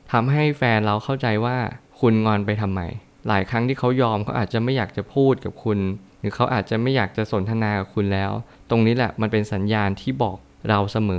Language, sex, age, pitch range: Thai, male, 20-39, 100-120 Hz